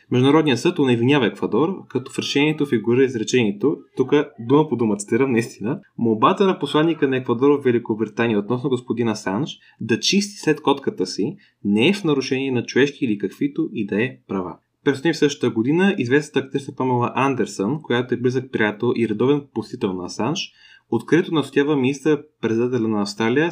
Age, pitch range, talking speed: 20-39, 115-145 Hz, 165 wpm